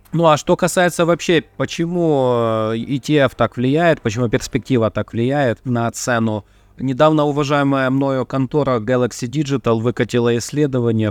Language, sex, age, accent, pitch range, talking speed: Russian, male, 30-49, native, 110-140 Hz, 125 wpm